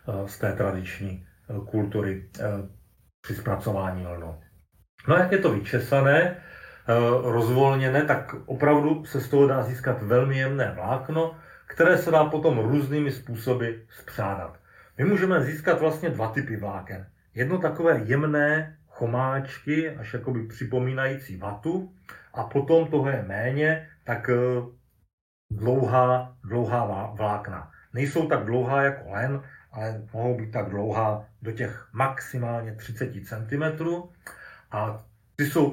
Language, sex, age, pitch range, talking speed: Slovak, male, 40-59, 105-135 Hz, 120 wpm